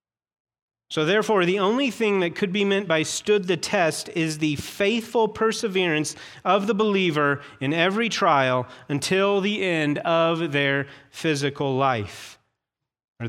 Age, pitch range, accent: 30-49, 140-195 Hz, American